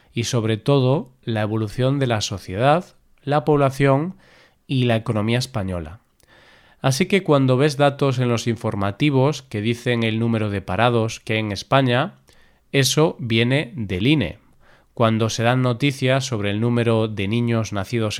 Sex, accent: male, Spanish